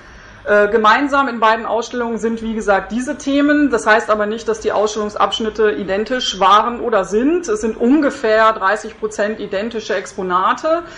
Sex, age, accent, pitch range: female, 40-59, German, 200-235 Hz